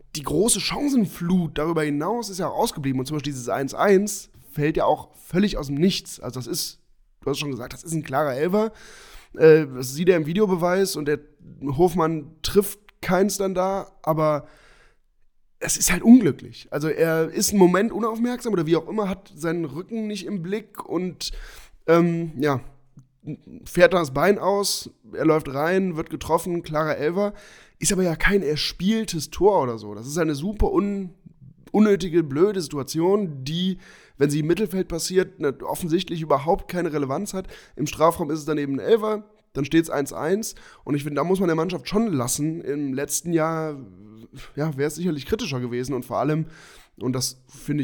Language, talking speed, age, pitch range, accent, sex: German, 180 wpm, 10-29, 145-190 Hz, German, male